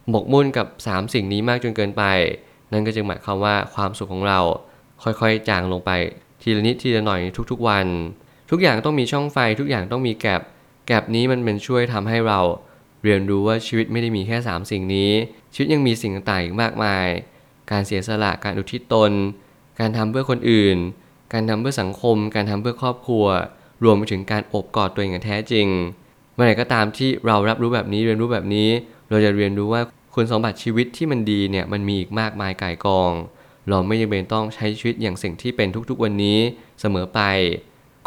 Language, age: Thai, 20-39